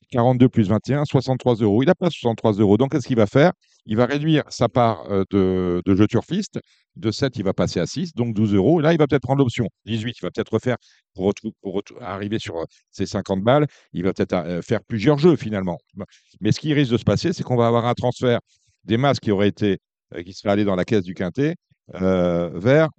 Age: 50-69